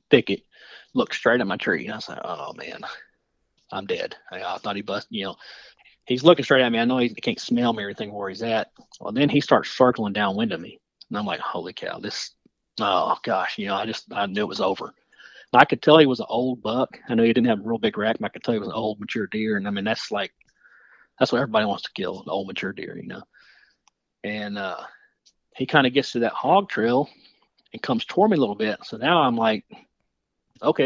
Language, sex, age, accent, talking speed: English, male, 40-59, American, 250 wpm